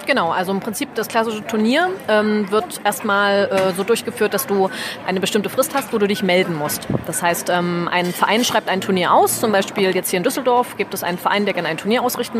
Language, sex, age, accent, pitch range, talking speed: German, female, 30-49, German, 190-225 Hz, 230 wpm